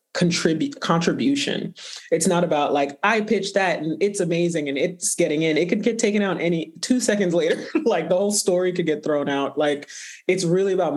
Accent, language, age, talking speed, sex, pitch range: American, English, 30-49, 200 wpm, male, 140-170 Hz